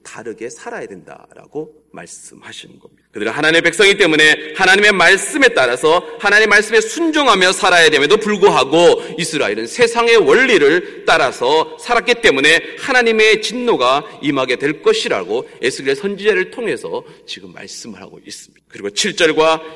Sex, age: male, 30-49